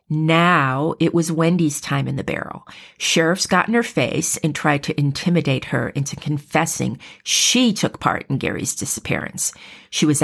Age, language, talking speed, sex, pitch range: 40-59, English, 165 wpm, female, 145-185 Hz